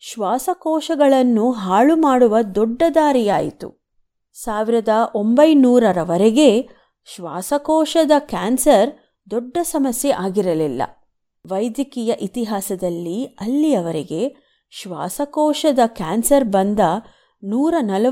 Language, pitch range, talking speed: Kannada, 195-285 Hz, 65 wpm